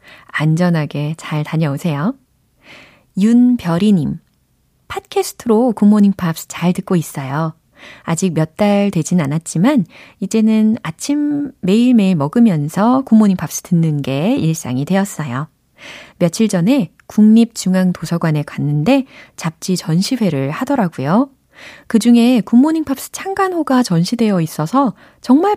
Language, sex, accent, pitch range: Korean, female, native, 155-230 Hz